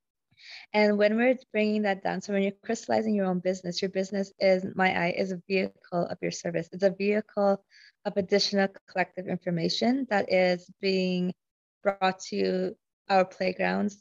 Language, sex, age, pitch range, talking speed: English, female, 20-39, 175-200 Hz, 165 wpm